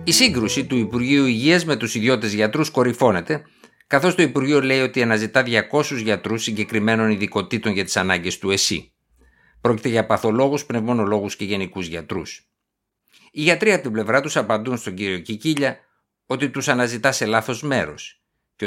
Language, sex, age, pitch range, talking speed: Greek, male, 60-79, 105-130 Hz, 160 wpm